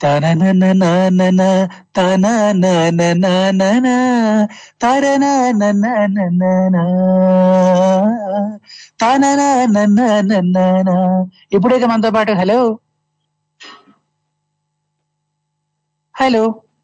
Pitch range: 175-215 Hz